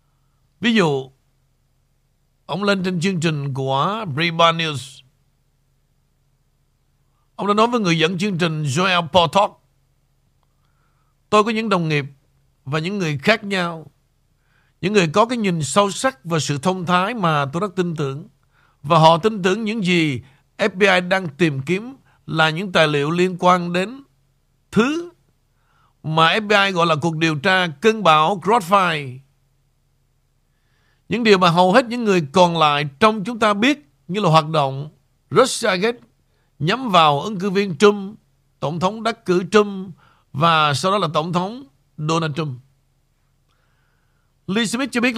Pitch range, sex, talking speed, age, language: 135-195 Hz, male, 155 wpm, 60-79, Vietnamese